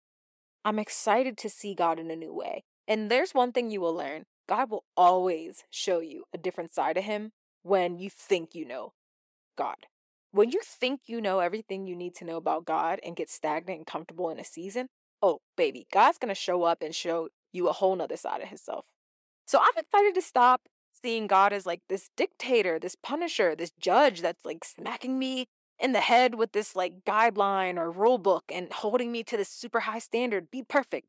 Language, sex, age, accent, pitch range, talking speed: English, female, 20-39, American, 185-250 Hz, 205 wpm